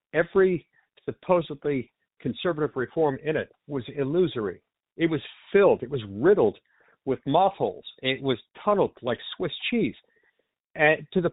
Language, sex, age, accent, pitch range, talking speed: English, male, 50-69, American, 130-180 Hz, 130 wpm